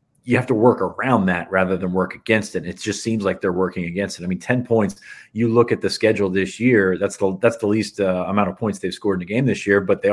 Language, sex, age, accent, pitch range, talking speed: English, male, 30-49, American, 95-110 Hz, 290 wpm